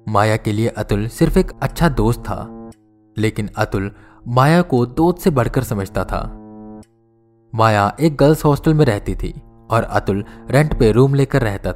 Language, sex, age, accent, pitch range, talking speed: Hindi, male, 20-39, native, 110-140 Hz, 165 wpm